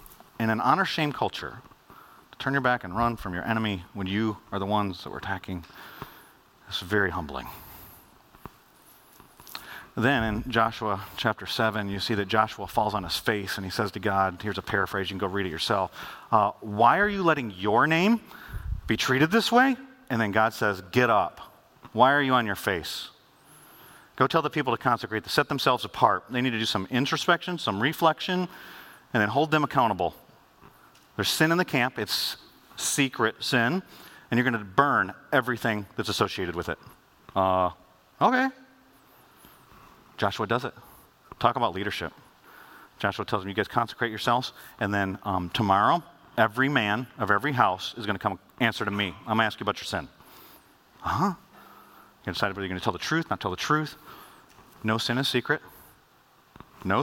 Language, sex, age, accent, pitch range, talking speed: English, male, 40-59, American, 100-130 Hz, 180 wpm